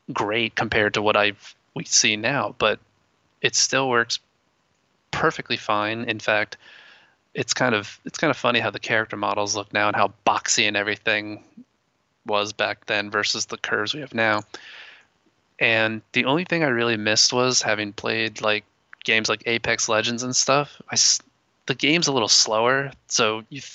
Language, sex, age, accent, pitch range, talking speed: English, male, 20-39, American, 105-130 Hz, 170 wpm